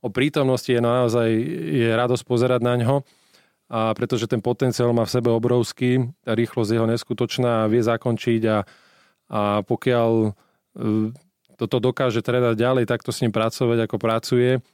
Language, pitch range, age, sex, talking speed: Slovak, 110-125 Hz, 20-39, male, 145 wpm